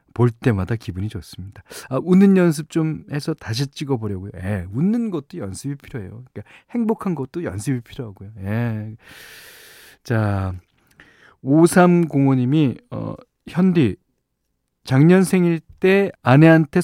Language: Korean